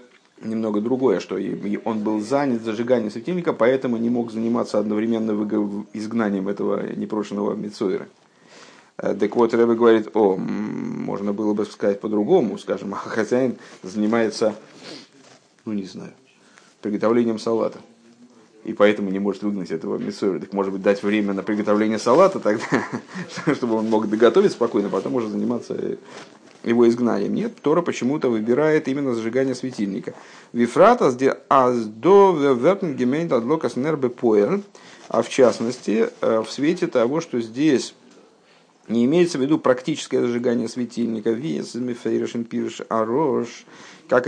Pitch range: 105-125 Hz